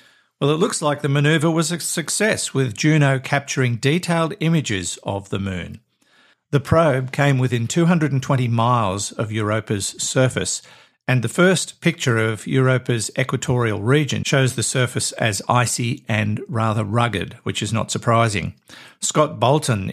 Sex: male